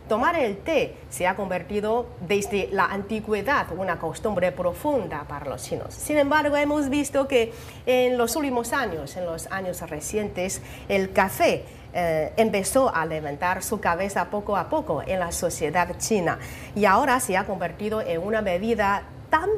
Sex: female